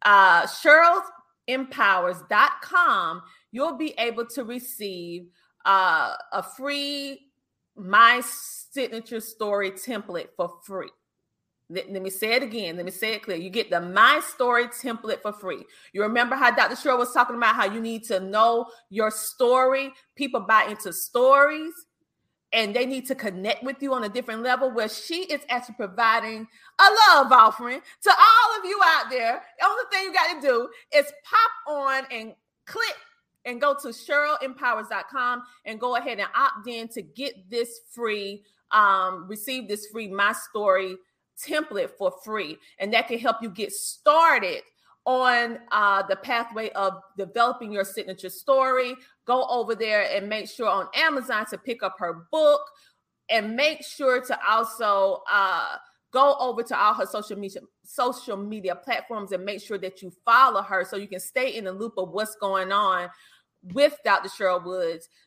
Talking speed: 165 wpm